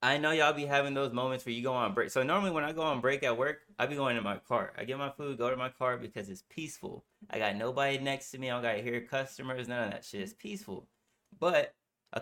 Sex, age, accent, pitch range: male, 20-39, American, 120-170 Hz